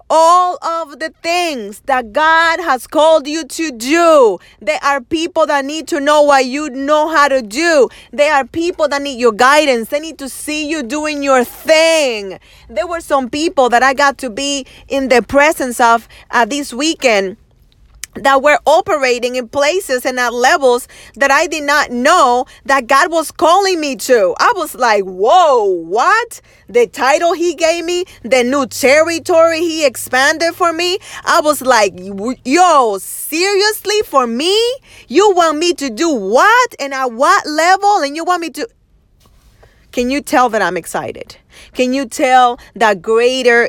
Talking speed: 170 wpm